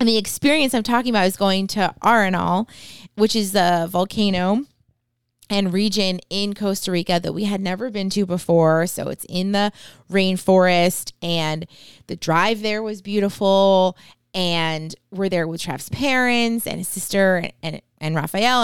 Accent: American